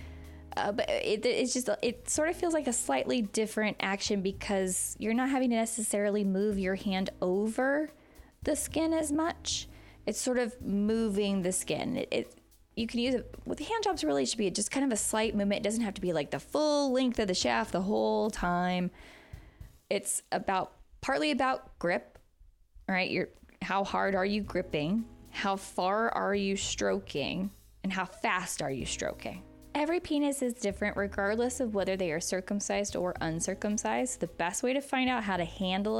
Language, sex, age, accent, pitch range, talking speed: English, female, 20-39, American, 180-235 Hz, 190 wpm